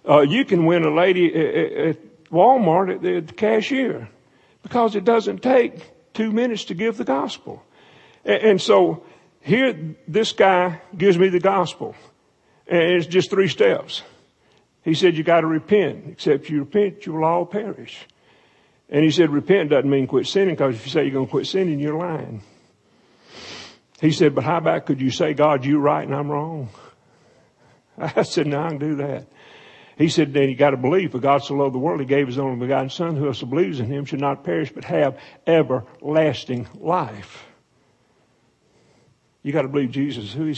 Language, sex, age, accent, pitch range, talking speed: English, male, 50-69, American, 140-195 Hz, 190 wpm